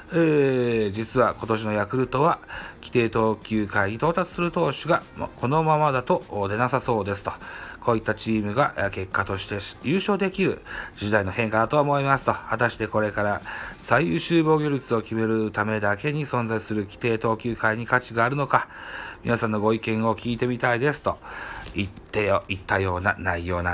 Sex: male